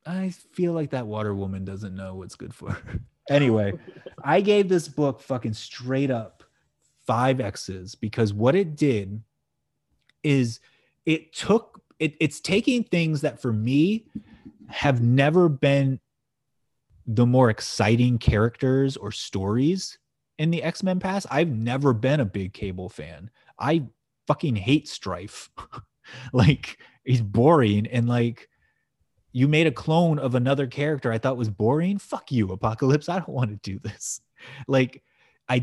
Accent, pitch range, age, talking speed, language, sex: American, 115-155 Hz, 30-49, 145 wpm, English, male